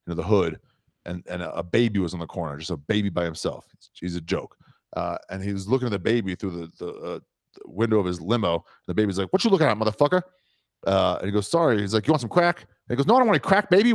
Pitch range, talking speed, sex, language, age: 105-155 Hz, 295 wpm, male, English, 30-49